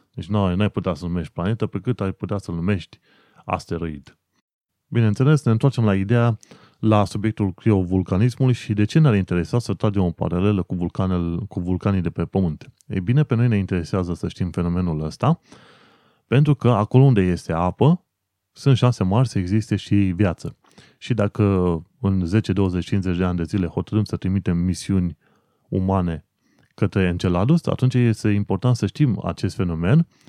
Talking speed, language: 170 wpm, Romanian